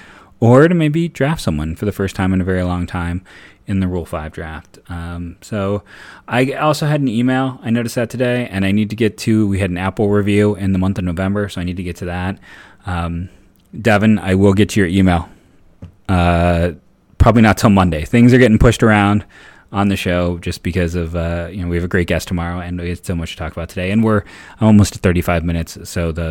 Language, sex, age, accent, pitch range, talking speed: English, male, 20-39, American, 90-115 Hz, 235 wpm